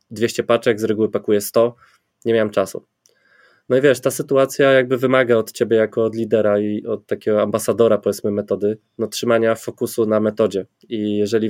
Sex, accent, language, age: male, native, Polish, 20-39